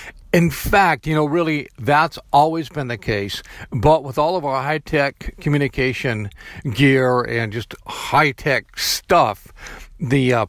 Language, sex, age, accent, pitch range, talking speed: English, male, 50-69, American, 120-155 Hz, 135 wpm